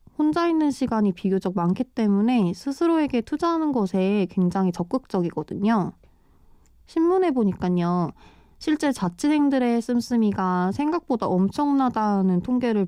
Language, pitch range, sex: Korean, 185-255 Hz, female